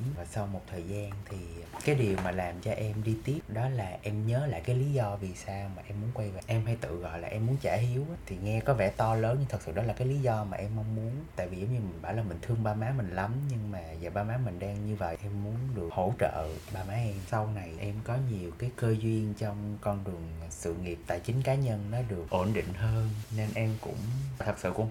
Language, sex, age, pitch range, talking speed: Vietnamese, male, 20-39, 95-120 Hz, 270 wpm